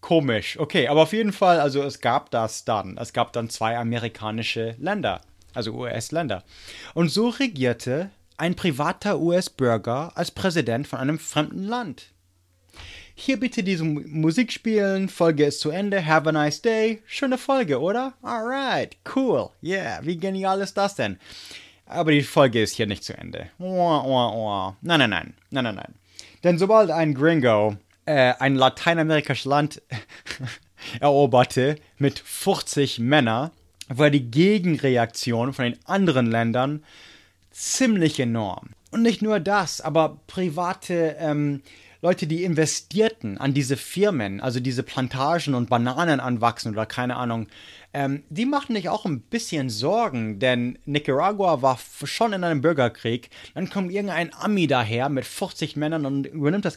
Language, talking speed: English, 145 wpm